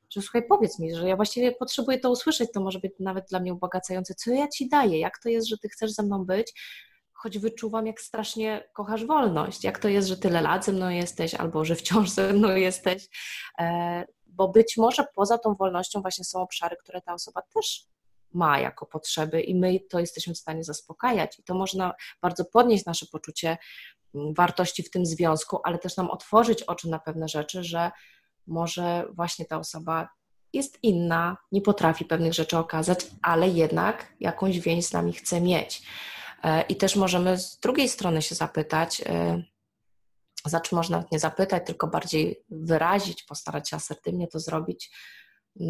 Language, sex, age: Polish, female, 20-39